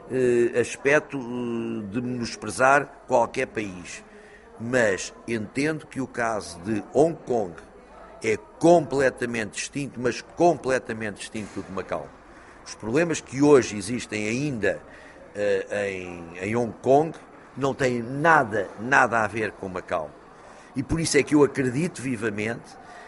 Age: 50-69